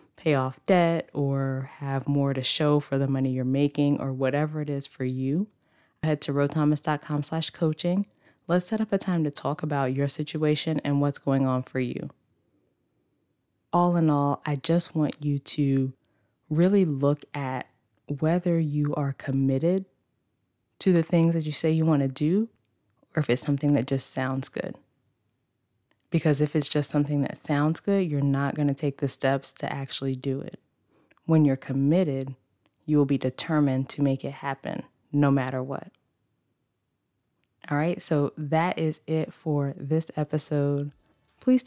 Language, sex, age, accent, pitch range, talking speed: English, female, 20-39, American, 135-155 Hz, 165 wpm